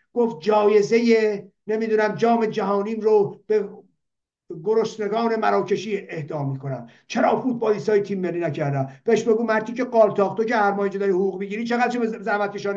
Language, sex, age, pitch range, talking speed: Persian, male, 50-69, 200-235 Hz, 135 wpm